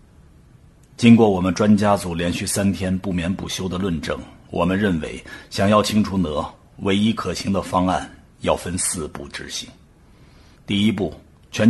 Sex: male